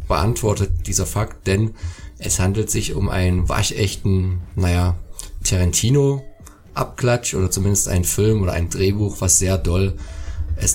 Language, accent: German, German